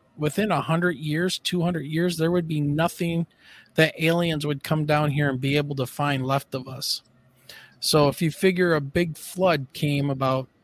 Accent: American